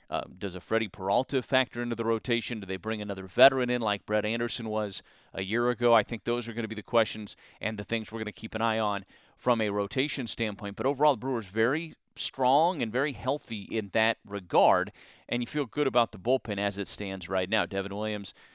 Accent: American